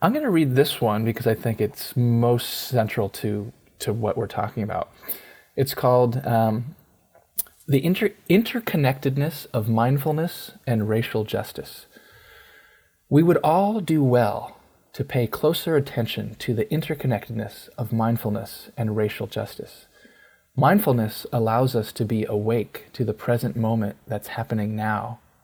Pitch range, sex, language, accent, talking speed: 110-125 Hz, male, English, American, 135 wpm